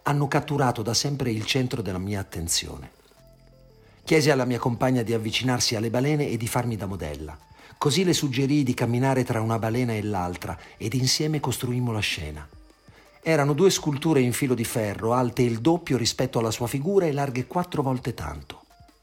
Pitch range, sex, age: 95-125 Hz, male, 50-69